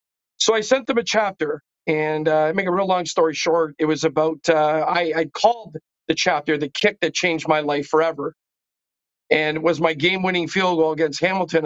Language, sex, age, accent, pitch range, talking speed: English, male, 50-69, American, 150-180 Hz, 205 wpm